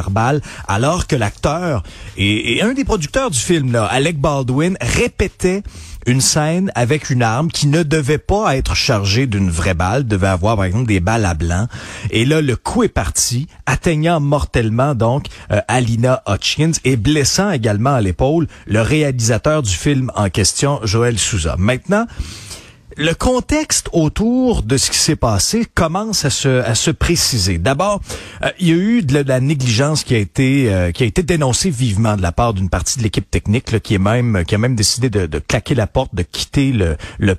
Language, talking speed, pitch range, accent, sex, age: French, 195 wpm, 105-155 Hz, Canadian, male, 40-59